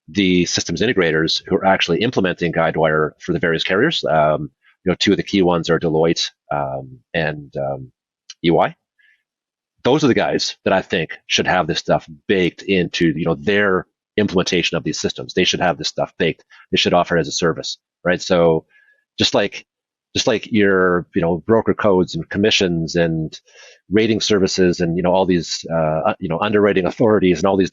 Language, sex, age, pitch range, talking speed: English, male, 30-49, 85-105 Hz, 195 wpm